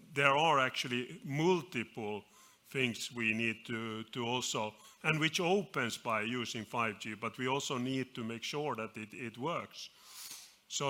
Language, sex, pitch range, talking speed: English, male, 110-135 Hz, 155 wpm